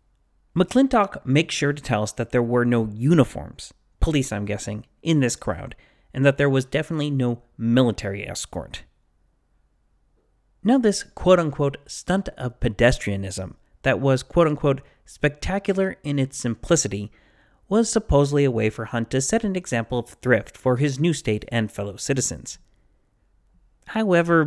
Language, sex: English, male